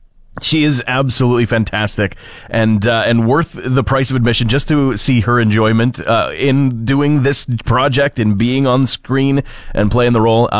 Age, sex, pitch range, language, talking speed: 30-49, male, 105-135 Hz, English, 170 wpm